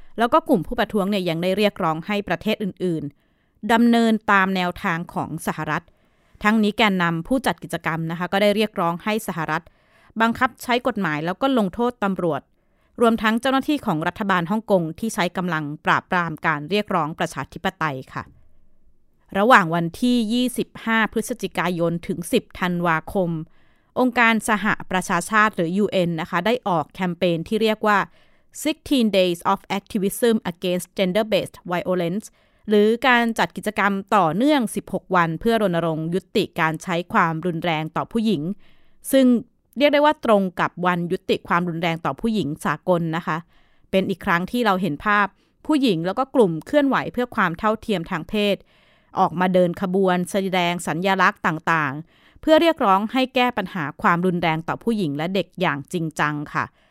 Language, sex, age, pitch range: Thai, female, 20-39, 170-220 Hz